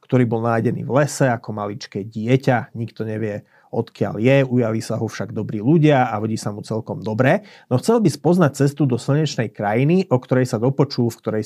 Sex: male